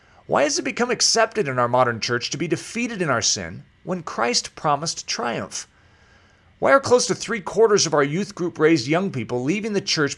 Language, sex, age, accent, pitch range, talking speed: English, male, 40-59, American, 110-165 Hz, 195 wpm